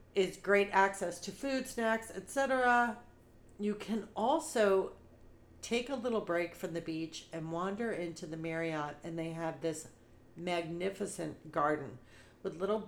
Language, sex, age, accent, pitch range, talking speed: English, female, 40-59, American, 165-210 Hz, 140 wpm